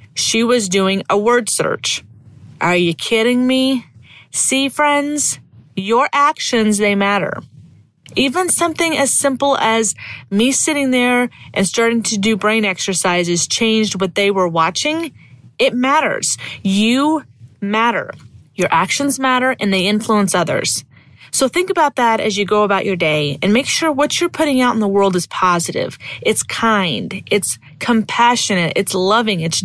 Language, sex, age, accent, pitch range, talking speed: English, female, 30-49, American, 170-240 Hz, 150 wpm